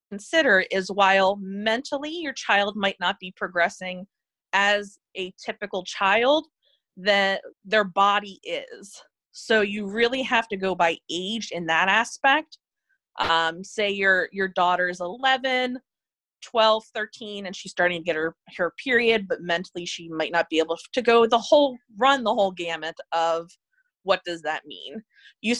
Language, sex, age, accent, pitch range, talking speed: English, female, 20-39, American, 185-235 Hz, 155 wpm